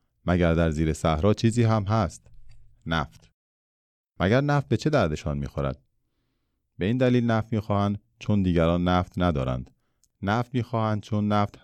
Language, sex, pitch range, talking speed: Persian, male, 80-105 Hz, 140 wpm